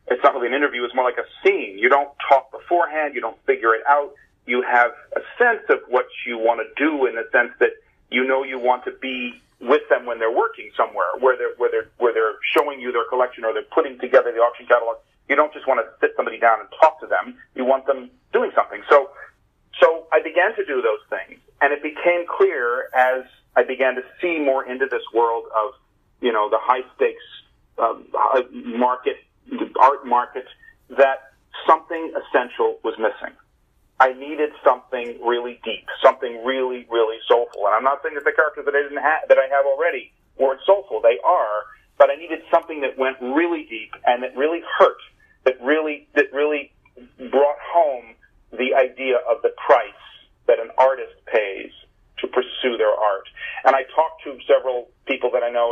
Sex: male